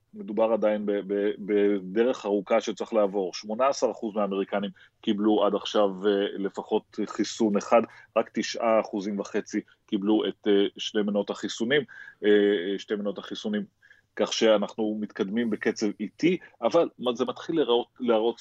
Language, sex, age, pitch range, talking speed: Hebrew, male, 30-49, 100-115 Hz, 110 wpm